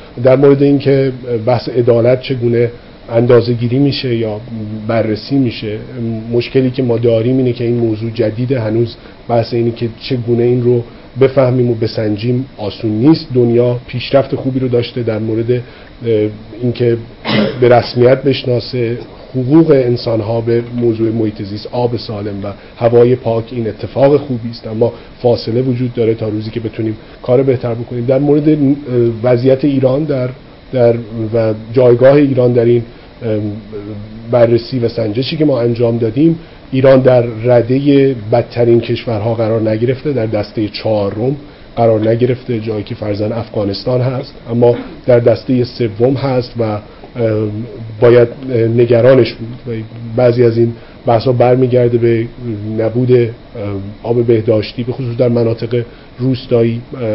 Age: 40-59